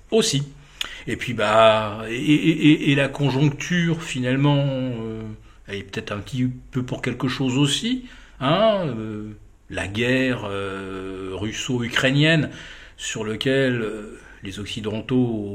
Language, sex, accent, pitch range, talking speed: French, male, French, 100-140 Hz, 125 wpm